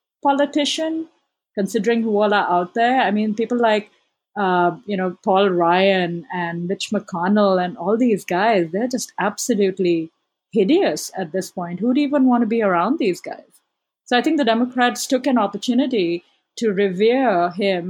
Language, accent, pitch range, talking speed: English, Indian, 180-230 Hz, 165 wpm